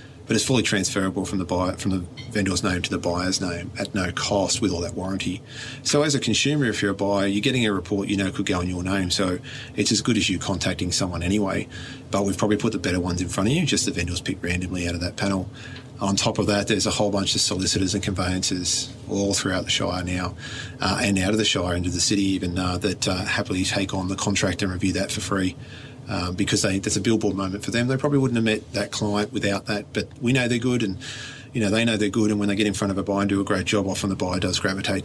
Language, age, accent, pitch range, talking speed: English, 30-49, Australian, 95-115 Hz, 270 wpm